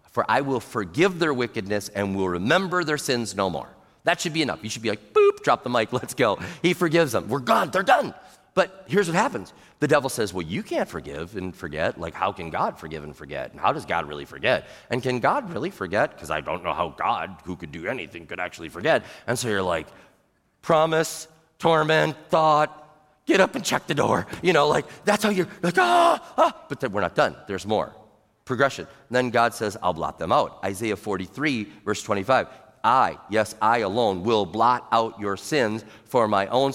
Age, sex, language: 40-59, male, English